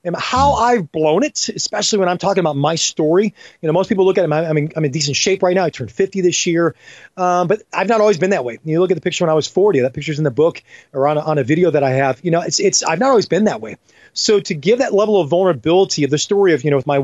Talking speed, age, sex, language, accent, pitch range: 305 wpm, 30-49, male, English, American, 150-205 Hz